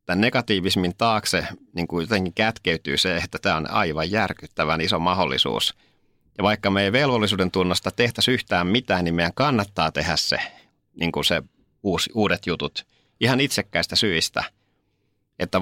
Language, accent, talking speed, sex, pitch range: Finnish, native, 150 wpm, male, 85-105 Hz